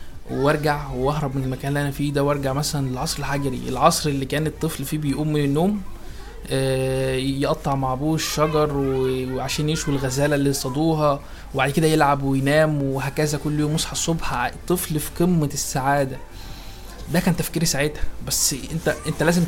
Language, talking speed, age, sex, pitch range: Arabic, 155 wpm, 20-39, male, 135-155 Hz